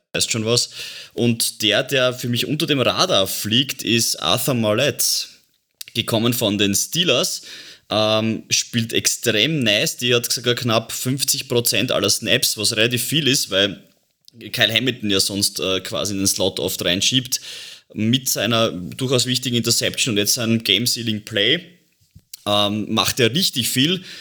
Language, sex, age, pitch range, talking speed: German, male, 20-39, 100-120 Hz, 150 wpm